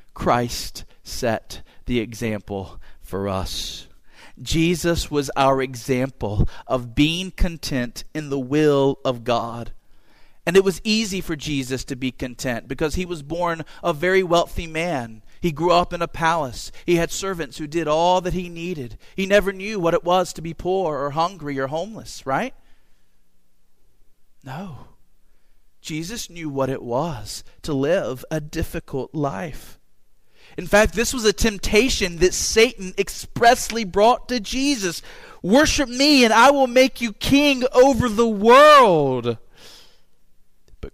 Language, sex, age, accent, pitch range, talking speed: English, male, 40-59, American, 130-185 Hz, 145 wpm